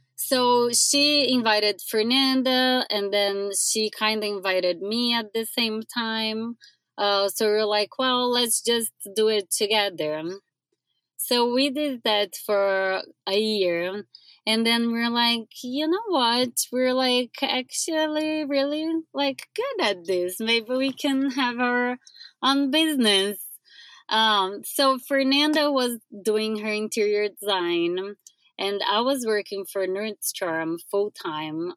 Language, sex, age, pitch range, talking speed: English, female, 20-39, 200-255 Hz, 130 wpm